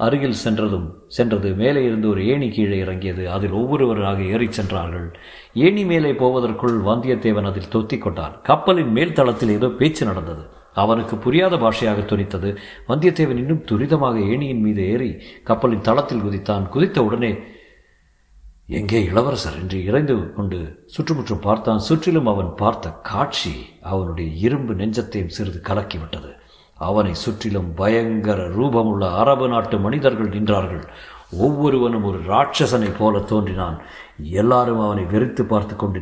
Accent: native